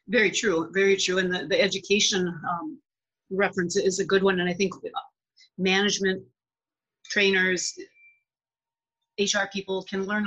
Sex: female